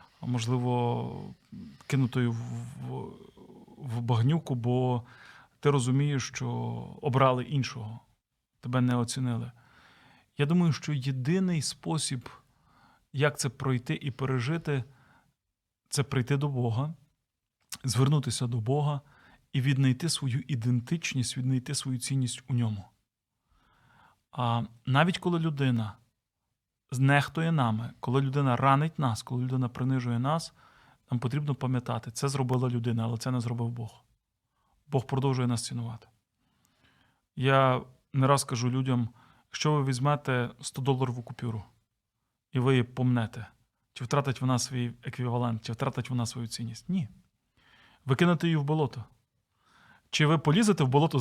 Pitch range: 120-140 Hz